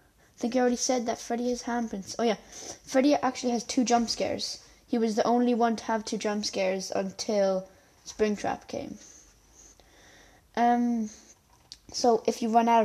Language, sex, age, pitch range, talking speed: English, female, 10-29, 200-240 Hz, 170 wpm